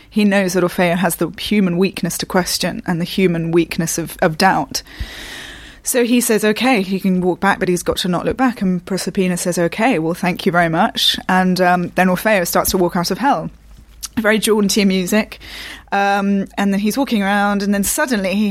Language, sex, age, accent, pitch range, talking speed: English, female, 20-39, British, 175-200 Hz, 210 wpm